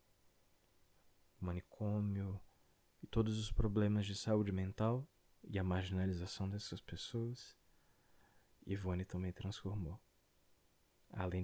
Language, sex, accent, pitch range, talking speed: Portuguese, male, Brazilian, 90-110 Hz, 90 wpm